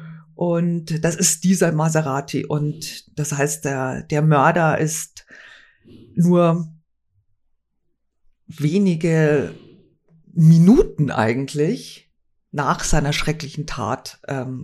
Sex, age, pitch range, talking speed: female, 50-69, 145-185 Hz, 85 wpm